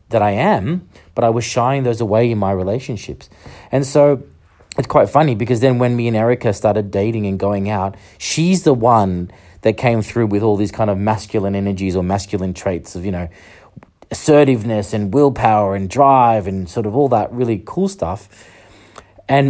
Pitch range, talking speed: 100-125 Hz, 190 wpm